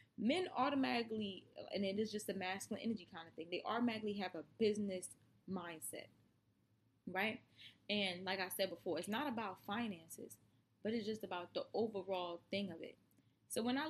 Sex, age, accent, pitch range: female, 20-39, American, 180-230 Hz